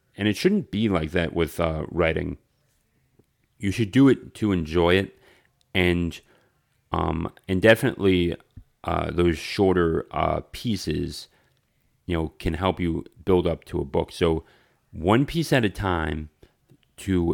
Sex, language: male, English